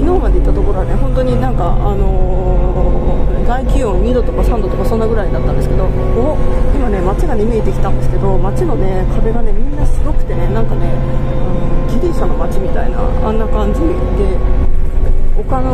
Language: Japanese